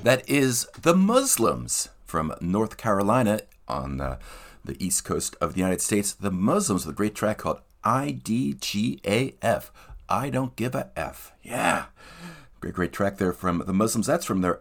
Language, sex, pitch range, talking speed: English, male, 85-120 Hz, 165 wpm